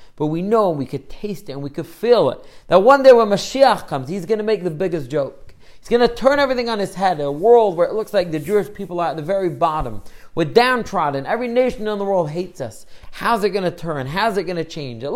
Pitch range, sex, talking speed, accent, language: 155-215 Hz, male, 270 wpm, American, English